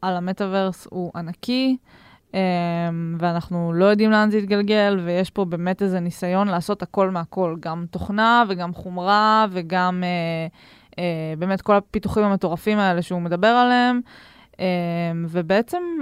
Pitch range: 180-220 Hz